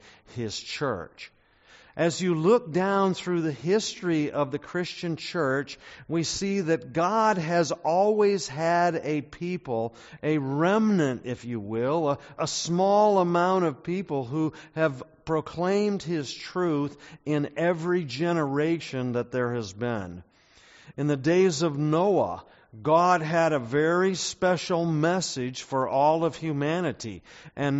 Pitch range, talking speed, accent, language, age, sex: 140-180 Hz, 130 wpm, American, English, 50-69, male